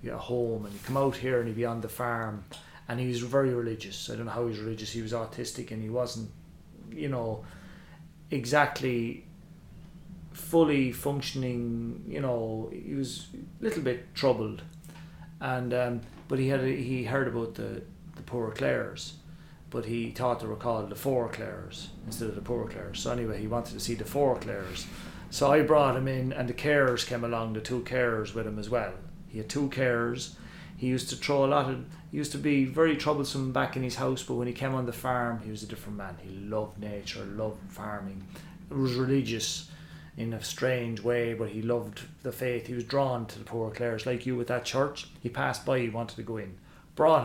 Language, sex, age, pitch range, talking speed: English, male, 30-49, 110-135 Hz, 215 wpm